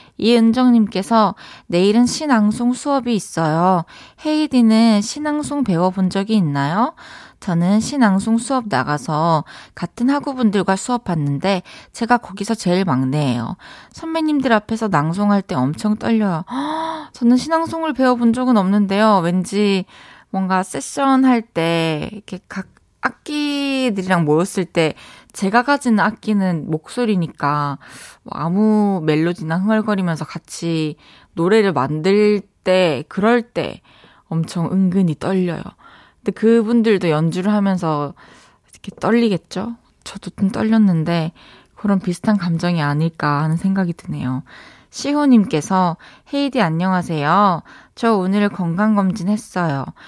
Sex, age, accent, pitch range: female, 20-39, native, 170-230 Hz